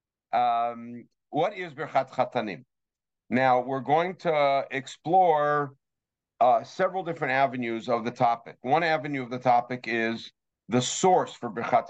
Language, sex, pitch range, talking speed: English, male, 115-145 Hz, 135 wpm